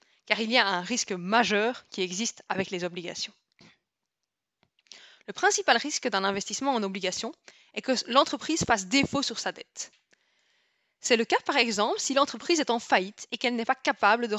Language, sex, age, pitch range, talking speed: French, female, 20-39, 205-245 Hz, 180 wpm